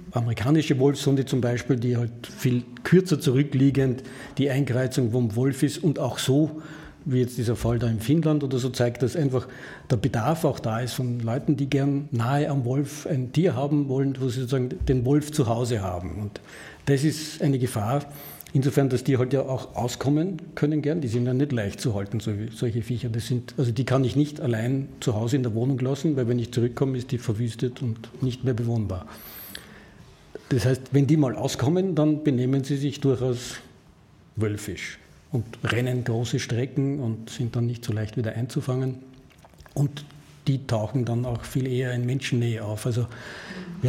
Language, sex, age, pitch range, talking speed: German, male, 50-69, 120-140 Hz, 190 wpm